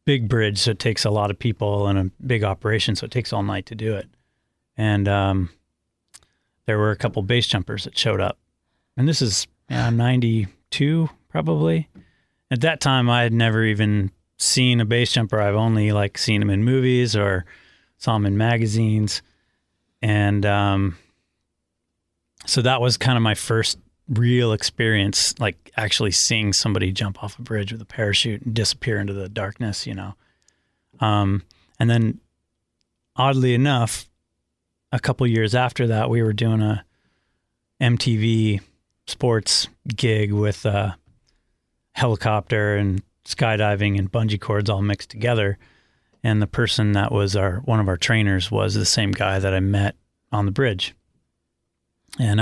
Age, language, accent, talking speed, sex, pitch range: 30-49, English, American, 160 wpm, male, 100-115 Hz